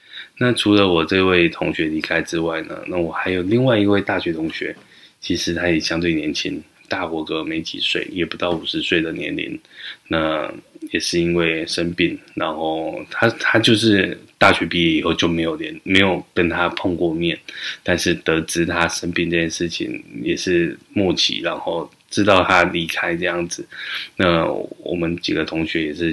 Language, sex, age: Chinese, male, 20-39